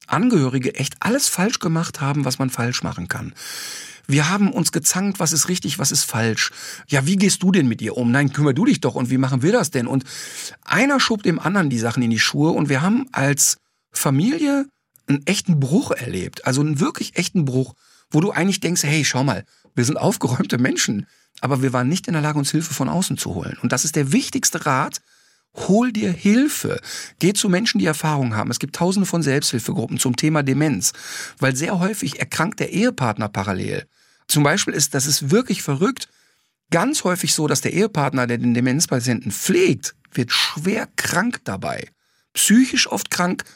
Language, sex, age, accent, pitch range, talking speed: German, male, 50-69, German, 135-200 Hz, 195 wpm